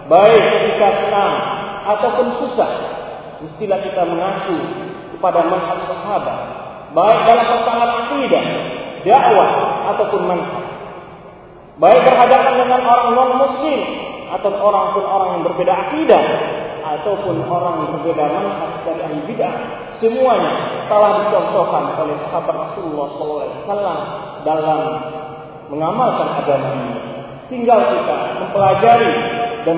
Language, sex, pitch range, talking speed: Malay, male, 165-225 Hz, 110 wpm